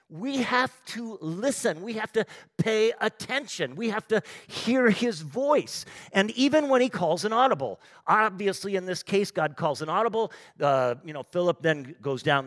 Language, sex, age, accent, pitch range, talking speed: English, male, 50-69, American, 130-190 Hz, 180 wpm